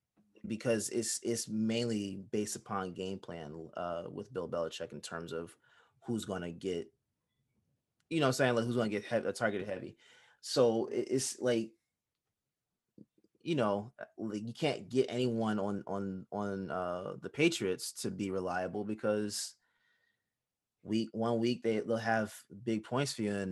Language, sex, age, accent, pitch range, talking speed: English, male, 20-39, American, 95-120 Hz, 165 wpm